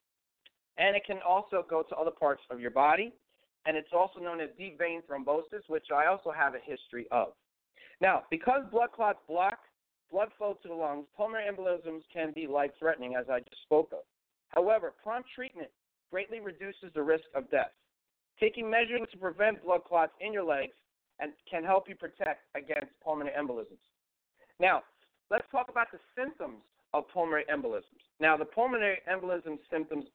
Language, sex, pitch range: English, male, 155-220 Hz